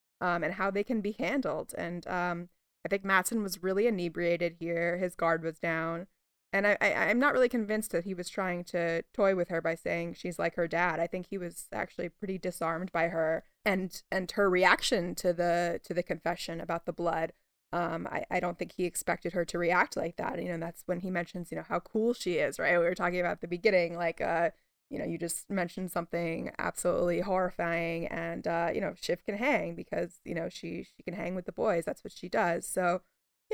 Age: 20-39